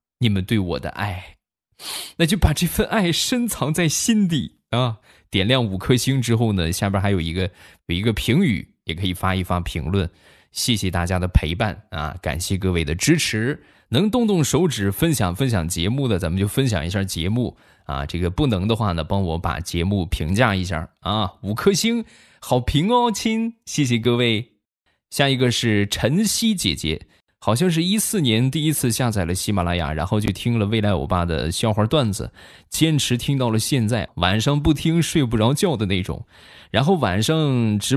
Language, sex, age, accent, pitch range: Chinese, male, 20-39, native, 90-135 Hz